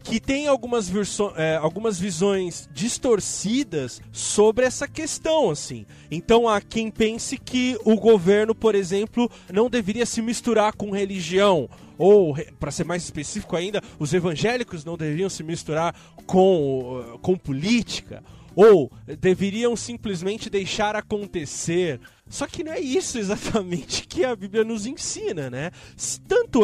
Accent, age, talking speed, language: Brazilian, 20-39, 135 wpm, Portuguese